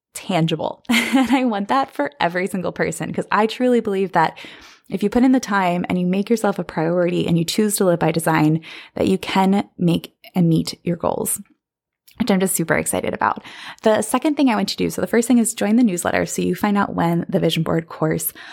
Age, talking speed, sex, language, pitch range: 20-39, 235 wpm, female, English, 175-215 Hz